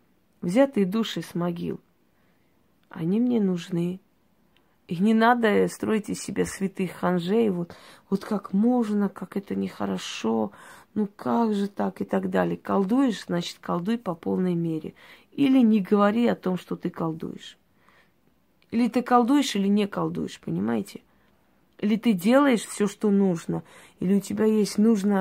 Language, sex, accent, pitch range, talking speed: Russian, female, native, 175-215 Hz, 145 wpm